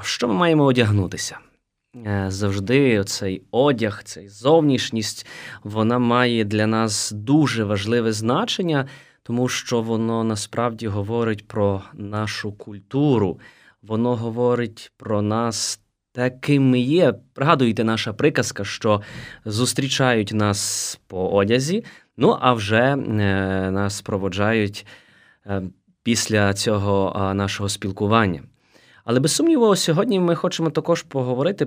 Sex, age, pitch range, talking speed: male, 20-39, 105-130 Hz, 110 wpm